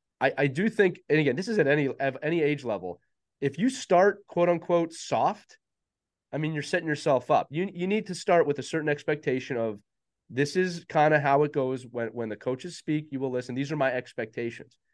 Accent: American